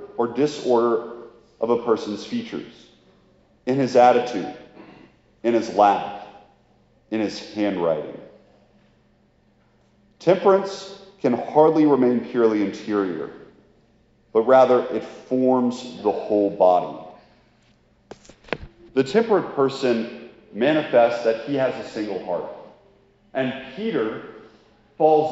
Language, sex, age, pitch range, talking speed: English, male, 40-59, 115-160 Hz, 95 wpm